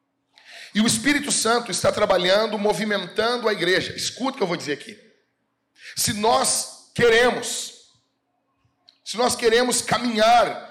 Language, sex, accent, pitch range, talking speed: Portuguese, male, Brazilian, 195-240 Hz, 130 wpm